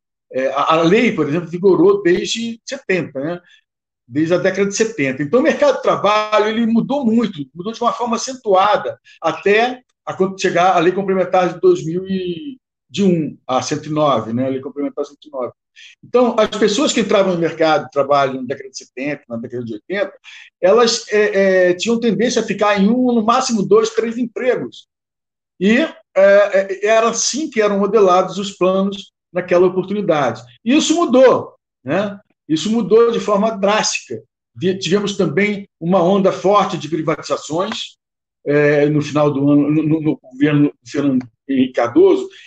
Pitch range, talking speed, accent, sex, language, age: 155-225 Hz, 155 wpm, Brazilian, male, Portuguese, 60-79